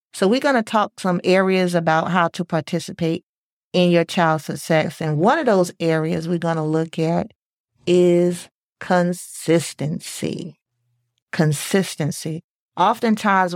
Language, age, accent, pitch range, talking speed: English, 40-59, American, 155-190 Hz, 130 wpm